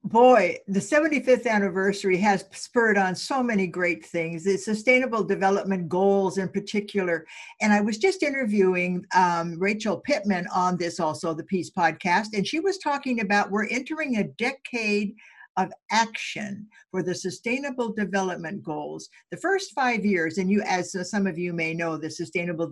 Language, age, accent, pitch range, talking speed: English, 60-79, American, 180-240 Hz, 160 wpm